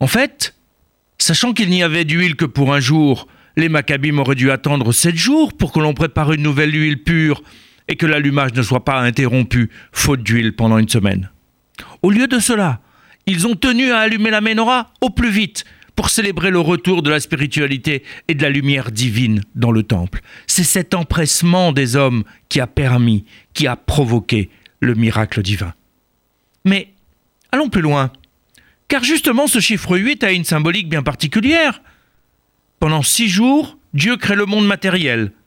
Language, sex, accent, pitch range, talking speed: French, male, French, 125-200 Hz, 175 wpm